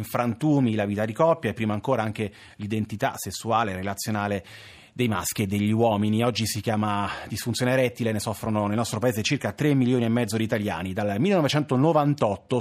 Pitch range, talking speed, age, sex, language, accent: 105-130 Hz, 170 wpm, 30-49, male, Italian, native